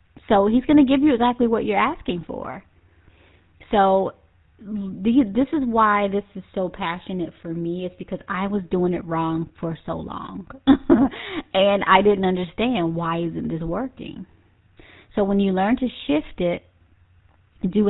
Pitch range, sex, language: 165-215 Hz, female, English